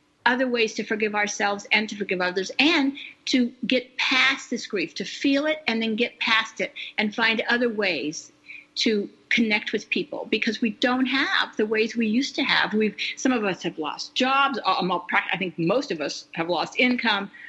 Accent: American